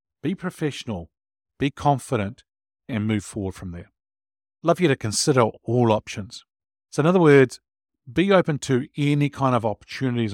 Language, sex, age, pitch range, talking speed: English, male, 50-69, 110-150 Hz, 155 wpm